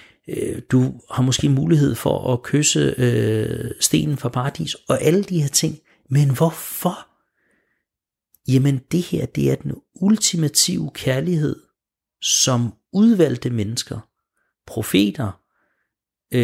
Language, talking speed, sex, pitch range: Danish, 105 wpm, male, 120-155 Hz